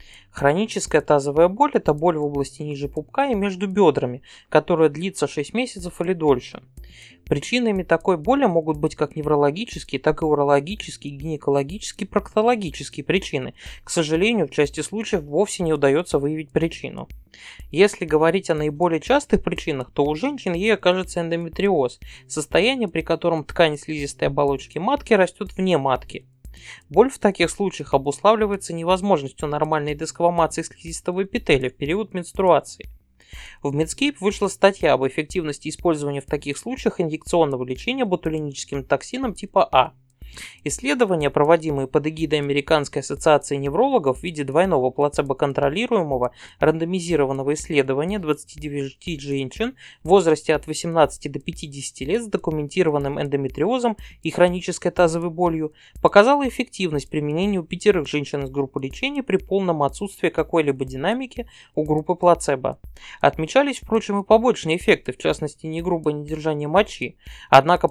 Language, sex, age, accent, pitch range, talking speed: Russian, male, 20-39, native, 145-190 Hz, 130 wpm